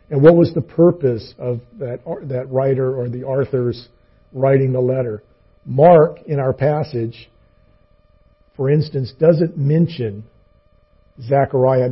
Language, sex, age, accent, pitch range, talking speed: English, male, 50-69, American, 115-140 Hz, 120 wpm